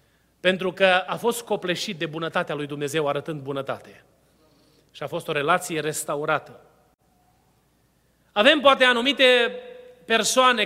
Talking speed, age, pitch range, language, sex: 120 wpm, 30-49, 180-255 Hz, Romanian, male